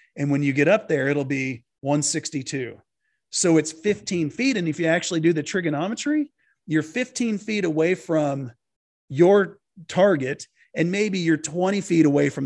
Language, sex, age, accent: English, male, 40-59, American